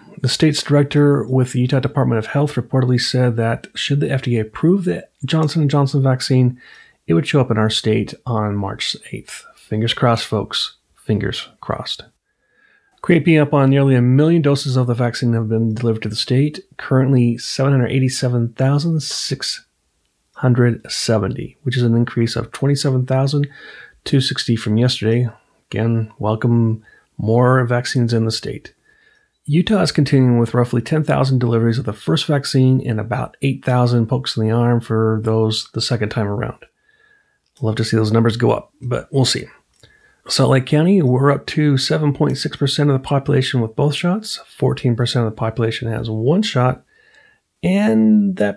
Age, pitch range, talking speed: 30-49, 115-145 Hz, 155 wpm